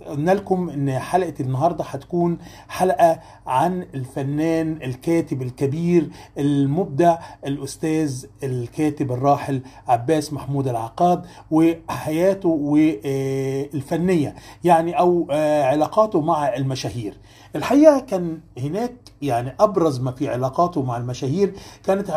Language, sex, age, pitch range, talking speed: Arabic, male, 40-59, 135-180 Hz, 95 wpm